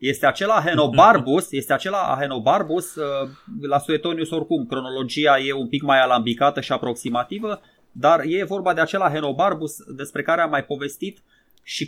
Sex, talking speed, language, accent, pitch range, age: male, 145 wpm, Romanian, native, 120-160 Hz, 20-39